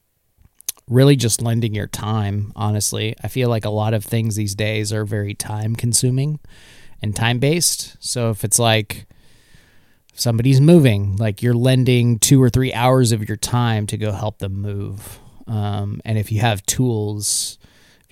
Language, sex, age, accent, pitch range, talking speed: English, male, 30-49, American, 105-125 Hz, 165 wpm